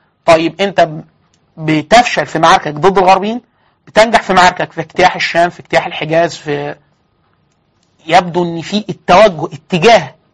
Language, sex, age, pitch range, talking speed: Arabic, male, 30-49, 155-190 Hz, 130 wpm